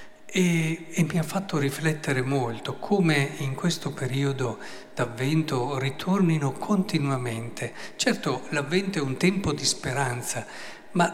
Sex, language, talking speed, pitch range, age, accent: male, Italian, 120 wpm, 125-165 Hz, 50-69, native